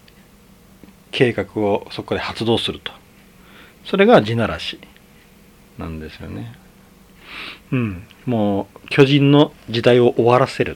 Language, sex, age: Japanese, male, 40-59